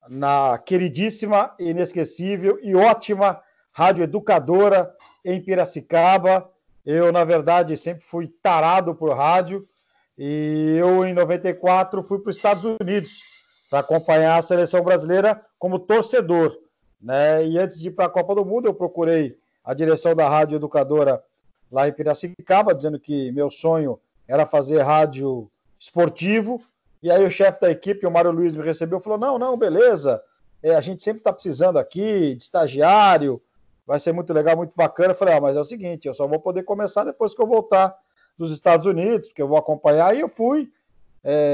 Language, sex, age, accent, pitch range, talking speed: Portuguese, male, 50-69, Brazilian, 160-210 Hz, 170 wpm